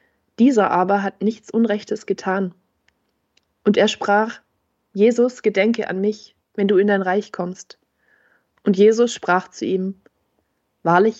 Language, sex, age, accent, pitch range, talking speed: German, female, 20-39, German, 185-220 Hz, 135 wpm